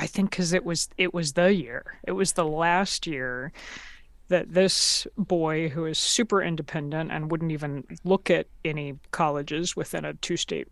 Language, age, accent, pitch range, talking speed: English, 30-49, American, 165-195 Hz, 180 wpm